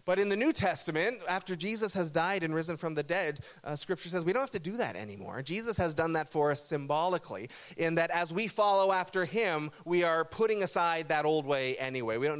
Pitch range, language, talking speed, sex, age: 145-195 Hz, English, 230 wpm, male, 30-49